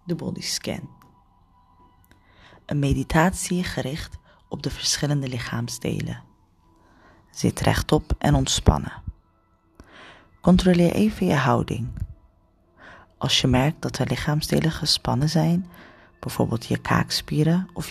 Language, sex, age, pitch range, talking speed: Dutch, female, 30-49, 95-160 Hz, 95 wpm